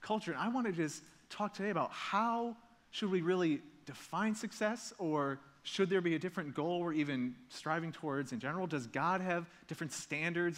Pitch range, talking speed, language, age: 125-165 Hz, 185 wpm, English, 30-49